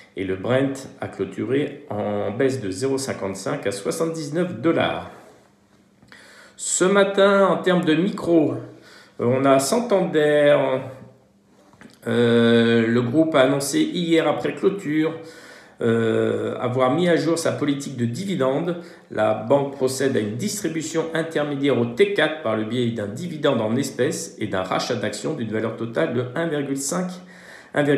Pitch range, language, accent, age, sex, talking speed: 130-165 Hz, French, French, 50-69, male, 135 wpm